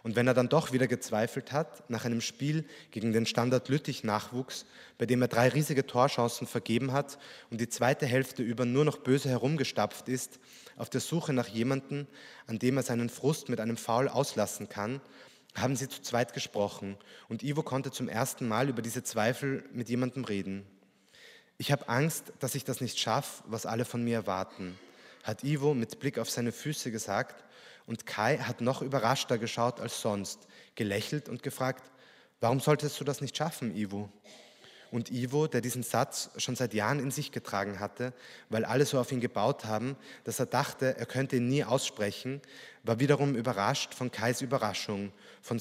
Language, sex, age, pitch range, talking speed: German, male, 20-39, 115-135 Hz, 180 wpm